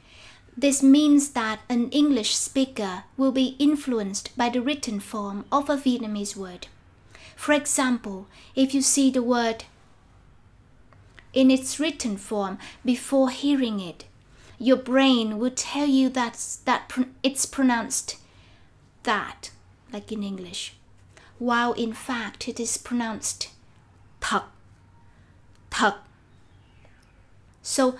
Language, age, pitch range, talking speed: Vietnamese, 20-39, 215-265 Hz, 110 wpm